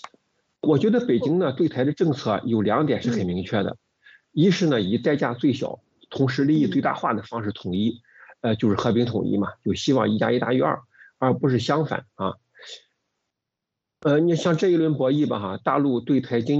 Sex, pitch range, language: male, 115-150 Hz, Chinese